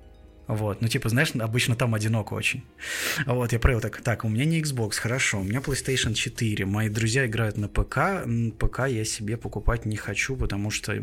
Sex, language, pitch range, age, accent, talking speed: male, Russian, 105-125 Hz, 20-39, native, 190 wpm